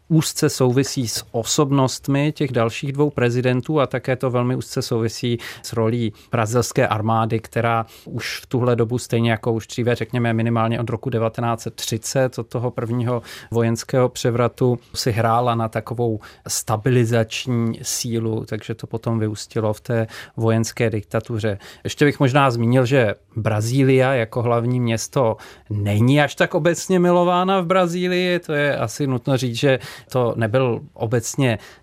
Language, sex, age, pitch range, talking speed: Czech, male, 30-49, 115-130 Hz, 145 wpm